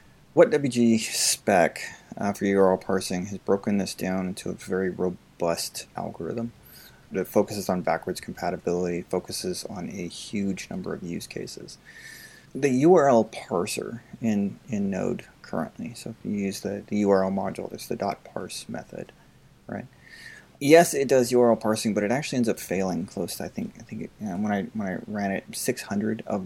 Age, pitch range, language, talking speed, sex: 30-49, 90-110 Hz, English, 175 wpm, male